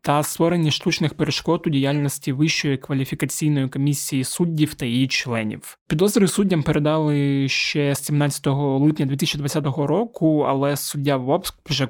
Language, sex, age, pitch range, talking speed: Ukrainian, male, 20-39, 135-155 Hz, 125 wpm